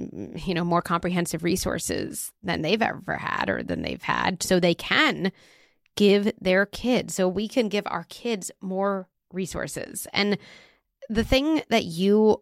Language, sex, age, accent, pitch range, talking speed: English, female, 30-49, American, 175-220 Hz, 155 wpm